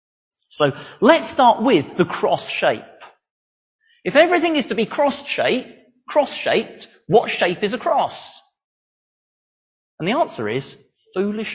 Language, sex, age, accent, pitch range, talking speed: English, male, 40-59, British, 185-275 Hz, 135 wpm